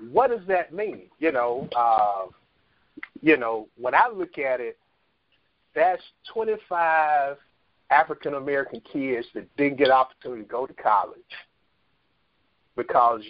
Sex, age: male, 50-69